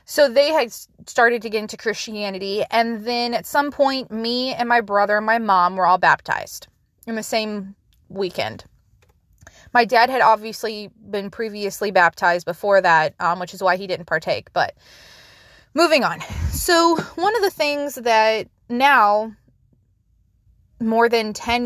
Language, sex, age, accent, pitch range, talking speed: English, female, 20-39, American, 195-240 Hz, 155 wpm